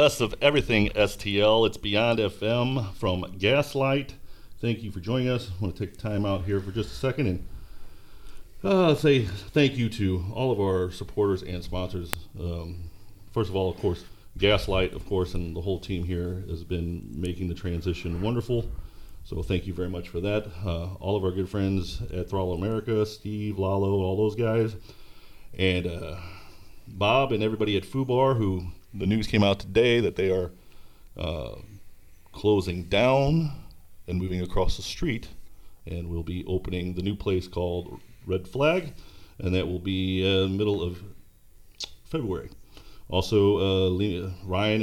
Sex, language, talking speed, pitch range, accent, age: male, English, 165 wpm, 90-110 Hz, American, 40-59